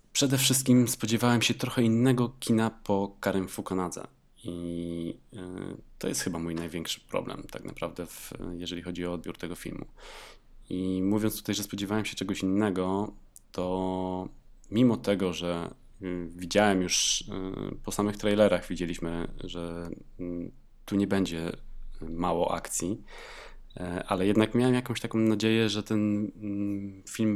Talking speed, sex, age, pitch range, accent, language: 125 wpm, male, 20-39, 90-105 Hz, native, Polish